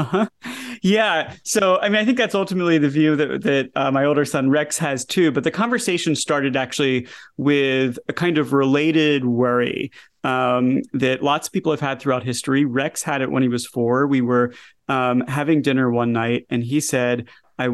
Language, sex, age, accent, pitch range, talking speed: English, male, 30-49, American, 125-155 Hz, 195 wpm